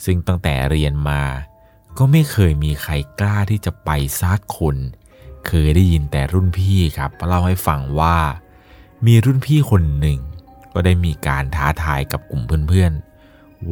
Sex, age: male, 20-39